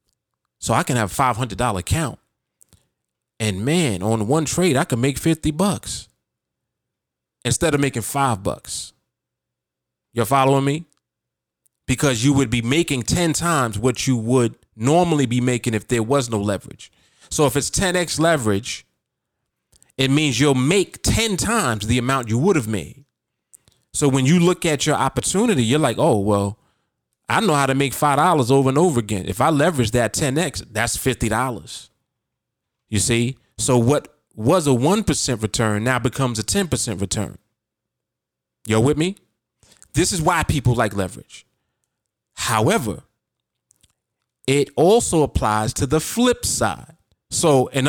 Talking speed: 150 wpm